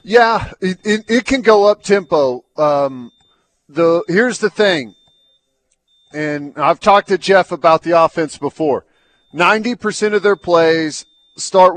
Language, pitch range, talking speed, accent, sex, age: English, 155-180 Hz, 145 wpm, American, male, 40-59